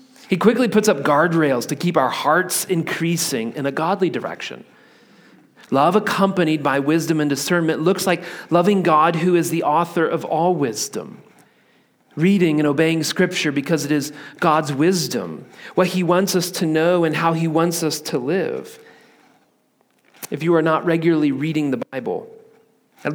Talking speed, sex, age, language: 160 wpm, male, 40-59, English